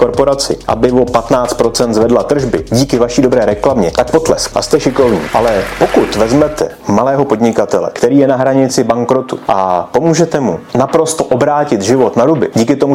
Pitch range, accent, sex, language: 110-130 Hz, native, male, Czech